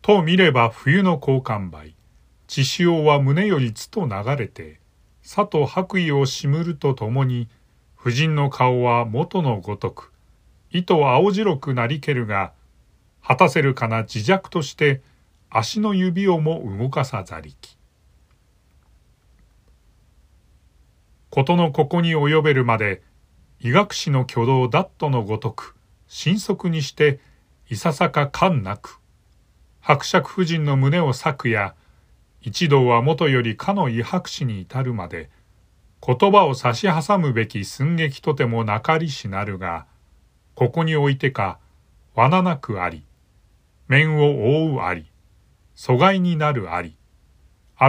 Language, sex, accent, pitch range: Japanese, male, native, 100-160 Hz